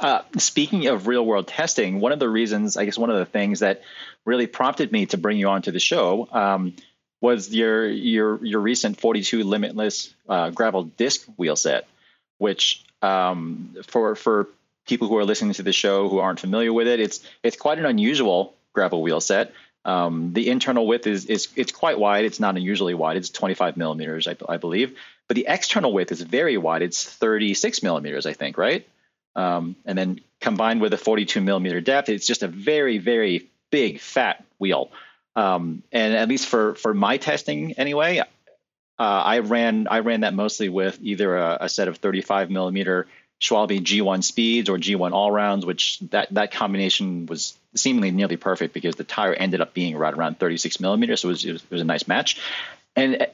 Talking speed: 190 wpm